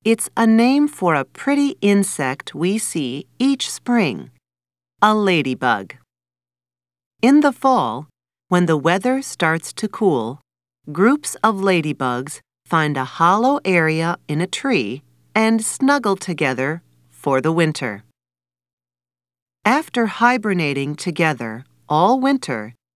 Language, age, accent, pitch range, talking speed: English, 40-59, American, 120-200 Hz, 110 wpm